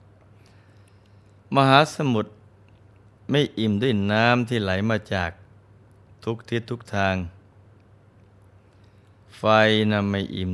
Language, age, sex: Thai, 20-39, male